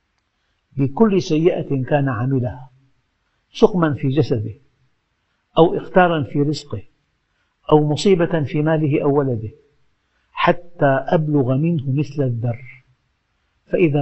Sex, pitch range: male, 120-155 Hz